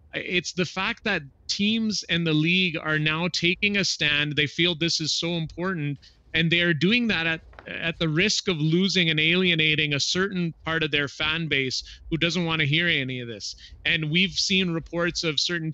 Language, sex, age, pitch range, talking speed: English, male, 30-49, 145-165 Hz, 200 wpm